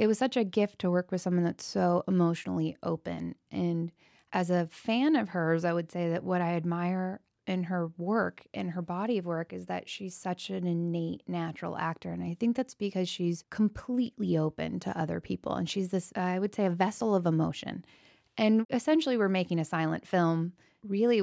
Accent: American